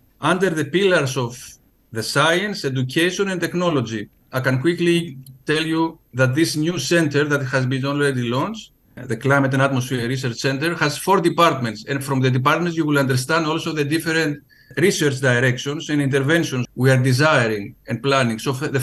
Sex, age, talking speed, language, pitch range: male, 50-69, 170 wpm, English, 130-160 Hz